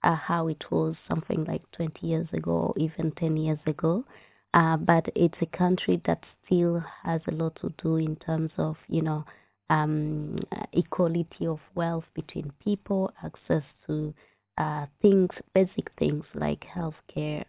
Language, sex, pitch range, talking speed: English, female, 155-180 Hz, 150 wpm